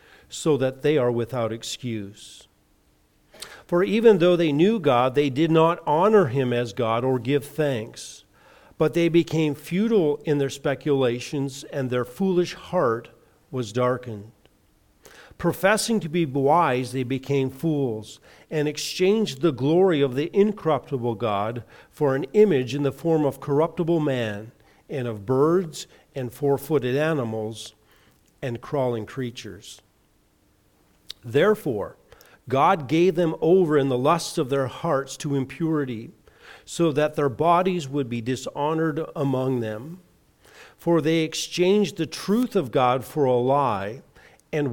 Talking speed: 135 wpm